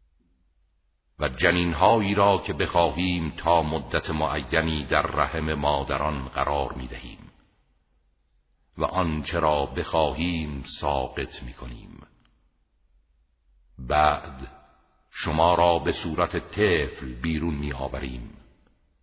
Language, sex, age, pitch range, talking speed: Persian, male, 60-79, 70-85 Hz, 80 wpm